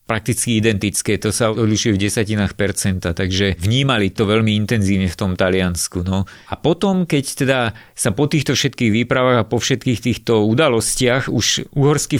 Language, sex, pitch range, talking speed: Slovak, male, 105-125 Hz, 160 wpm